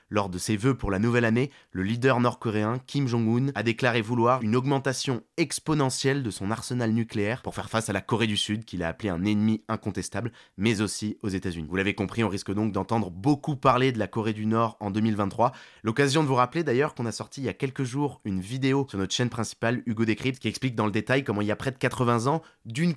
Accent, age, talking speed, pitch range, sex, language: French, 20-39, 245 wpm, 100-130 Hz, male, French